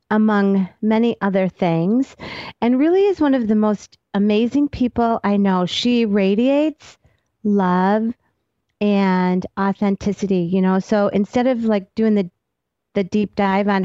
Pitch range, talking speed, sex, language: 180-230 Hz, 140 wpm, female, English